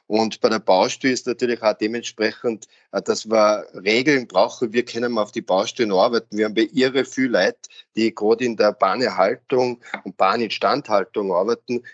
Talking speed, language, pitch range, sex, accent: 160 wpm, German, 110-130 Hz, male, German